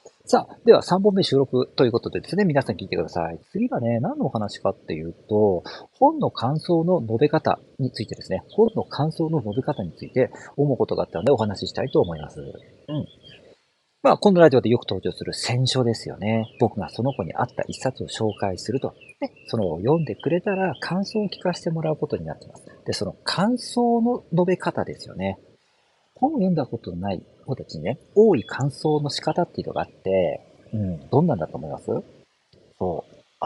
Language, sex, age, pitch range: Japanese, male, 40-59, 110-170 Hz